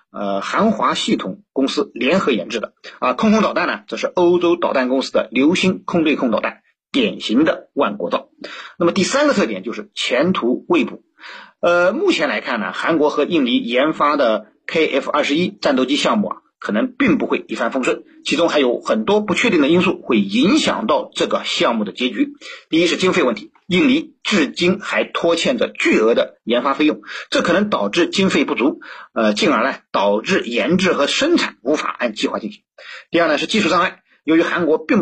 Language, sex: Chinese, male